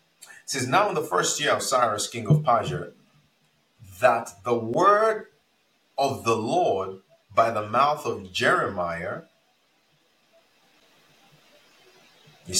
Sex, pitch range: male, 100-150 Hz